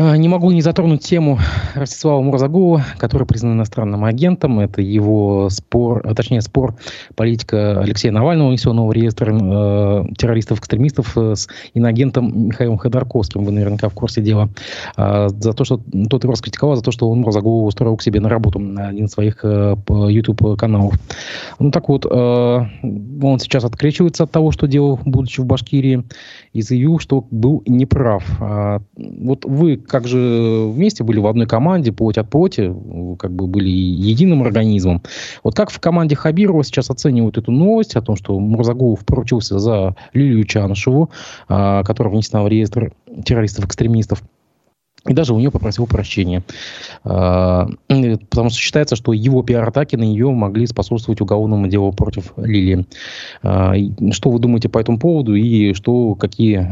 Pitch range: 105-130 Hz